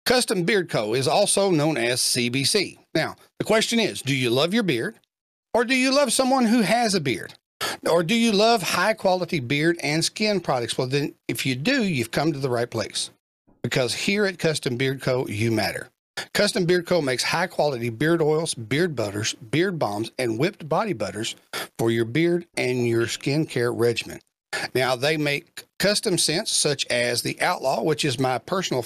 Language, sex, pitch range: English, male, 130-190 Hz